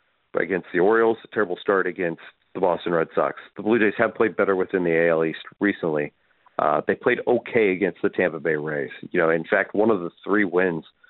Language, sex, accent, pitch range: English, male, American, 85-115 Hz